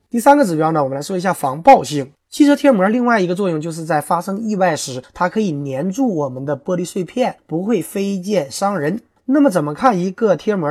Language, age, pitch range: Chinese, 20-39, 145-205 Hz